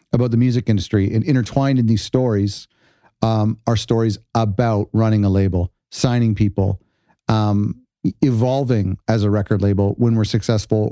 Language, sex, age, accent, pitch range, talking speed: English, male, 40-59, American, 105-130 Hz, 150 wpm